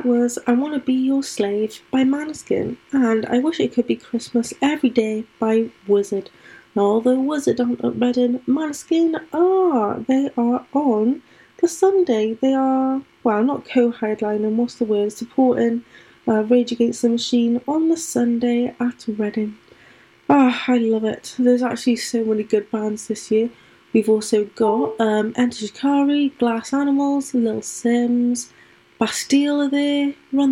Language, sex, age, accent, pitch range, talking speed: English, female, 20-39, British, 220-270 Hz, 160 wpm